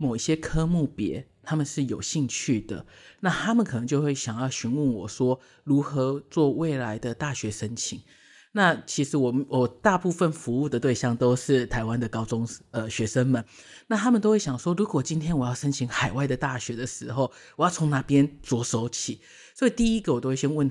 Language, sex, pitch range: Chinese, male, 120-155 Hz